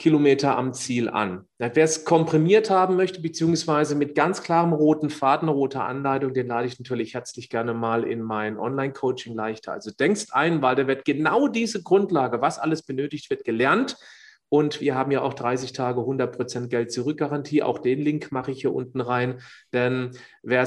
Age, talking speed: 40-59, 180 wpm